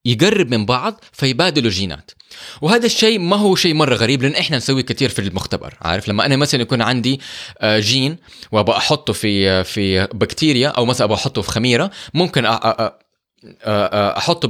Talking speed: 155 wpm